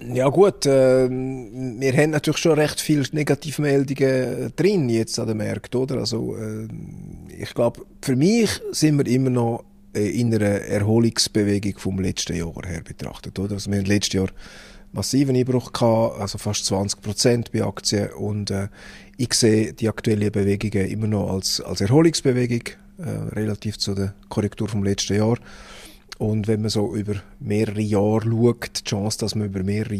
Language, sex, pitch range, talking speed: German, male, 100-125 Hz, 165 wpm